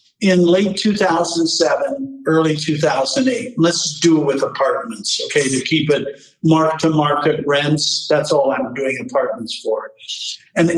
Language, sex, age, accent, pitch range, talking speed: English, male, 50-69, American, 155-215 Hz, 130 wpm